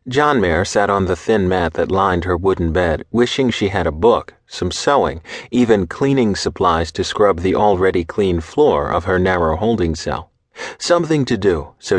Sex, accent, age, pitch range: male, American, 40-59, 90-125 Hz